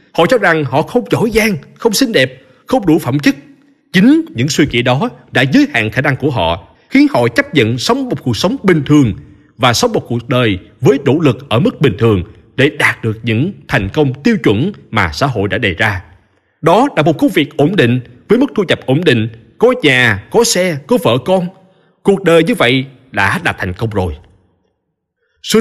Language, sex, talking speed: Vietnamese, male, 215 wpm